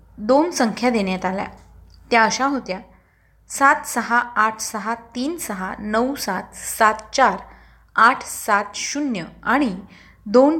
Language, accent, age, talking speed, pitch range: Marathi, native, 20-39, 125 wpm, 200-260 Hz